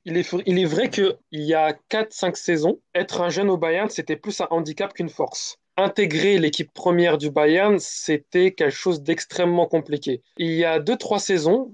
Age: 20-39